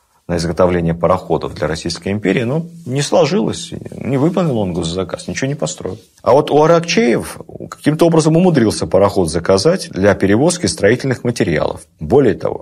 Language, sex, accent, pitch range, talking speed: Russian, male, native, 85-115 Hz, 145 wpm